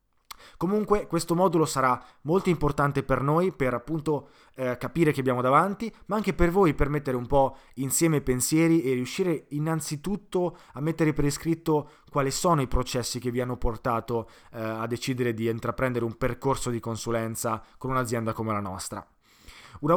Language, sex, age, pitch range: Italian, male, 20-39, 120-150 Hz